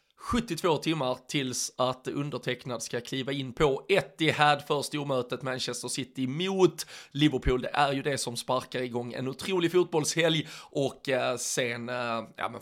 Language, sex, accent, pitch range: Swedish, male, native, 125-155 Hz